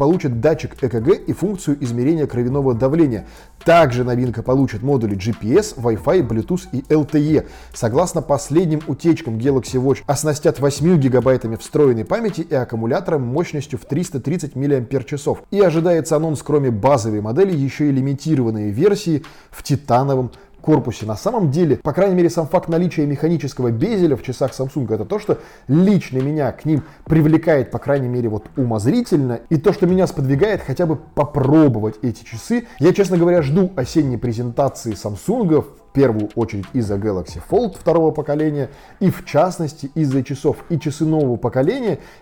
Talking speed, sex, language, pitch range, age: 150 wpm, male, Russian, 125-160 Hz, 20-39